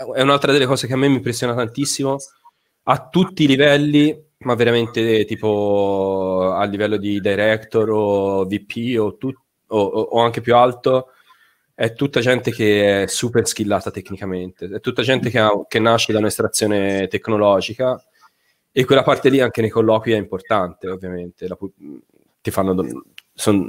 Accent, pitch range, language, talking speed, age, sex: native, 95-120 Hz, Italian, 160 wpm, 20-39, male